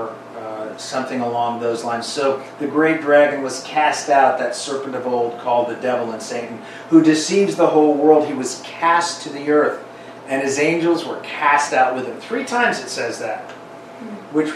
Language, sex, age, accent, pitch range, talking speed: English, male, 40-59, American, 135-185 Hz, 185 wpm